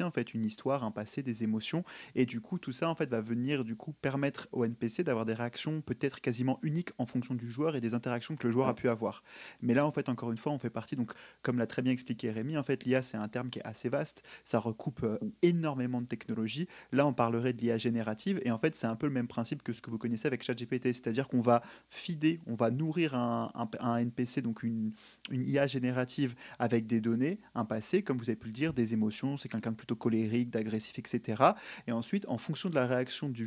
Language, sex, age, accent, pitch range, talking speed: French, male, 30-49, French, 115-140 Hz, 250 wpm